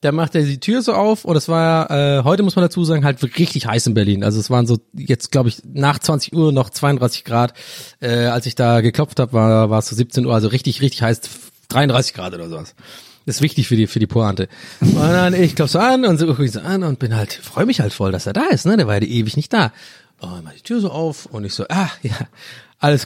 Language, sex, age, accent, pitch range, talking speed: German, male, 30-49, German, 125-165 Hz, 265 wpm